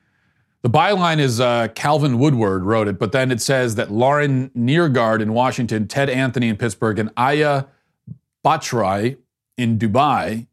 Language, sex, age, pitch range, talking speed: English, male, 40-59, 110-140 Hz, 150 wpm